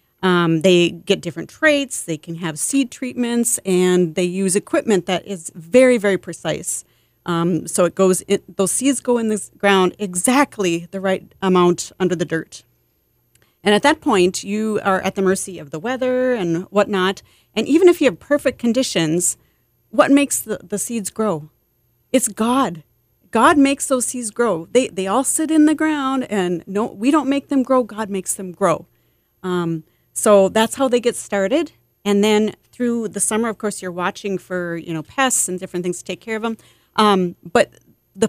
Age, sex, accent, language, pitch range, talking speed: 40-59, female, American, English, 180-255 Hz, 190 wpm